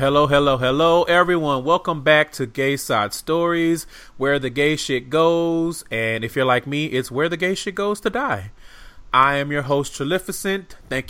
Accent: American